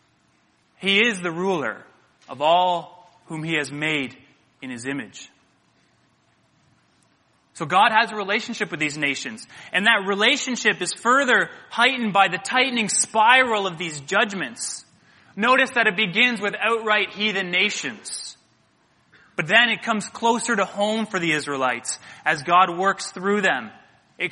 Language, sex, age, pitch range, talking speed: English, male, 20-39, 170-215 Hz, 145 wpm